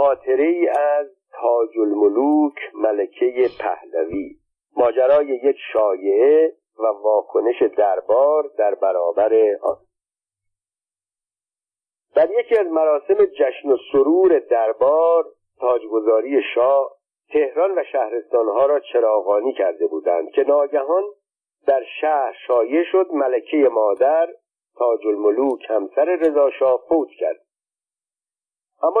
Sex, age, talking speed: male, 50-69, 95 wpm